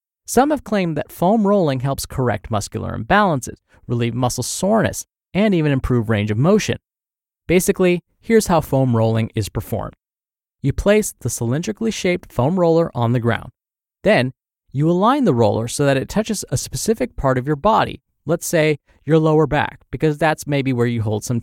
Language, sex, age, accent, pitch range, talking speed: English, male, 20-39, American, 120-175 Hz, 175 wpm